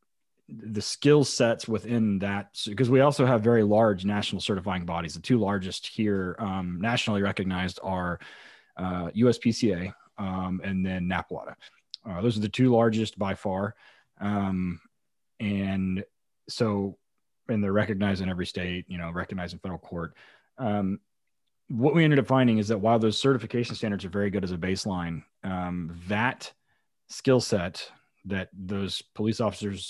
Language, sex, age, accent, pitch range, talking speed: English, male, 30-49, American, 95-115 Hz, 155 wpm